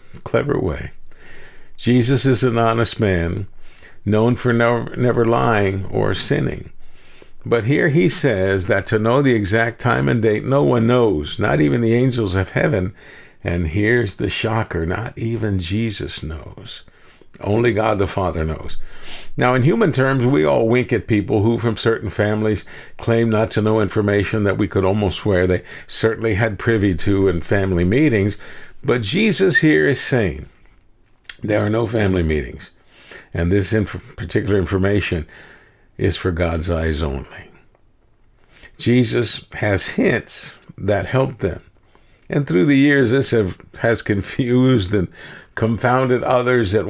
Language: English